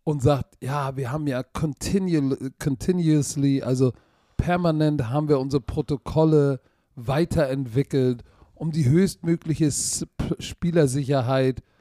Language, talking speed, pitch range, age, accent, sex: German, 95 wpm, 125-160 Hz, 40-59, German, male